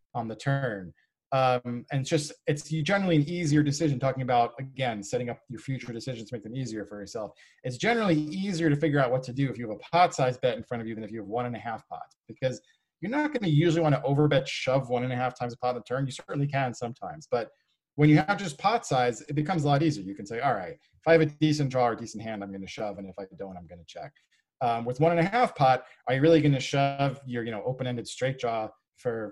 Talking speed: 270 wpm